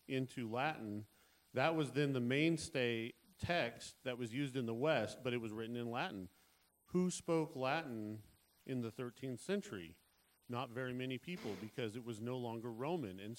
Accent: American